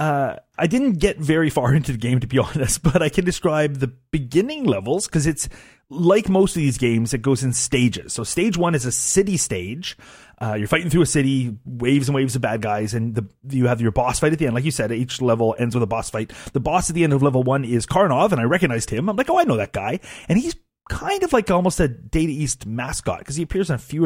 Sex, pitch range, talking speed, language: male, 115-160 Hz, 265 wpm, English